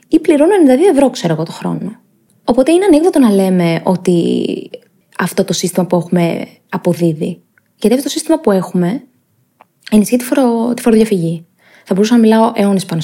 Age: 20-39